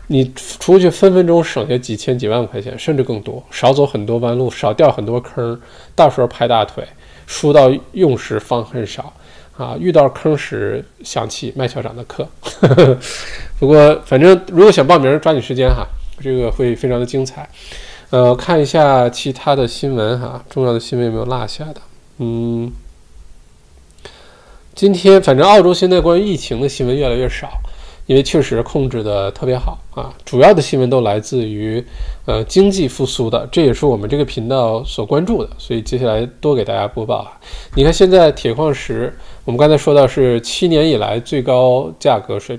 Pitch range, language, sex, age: 120-155 Hz, Chinese, male, 20-39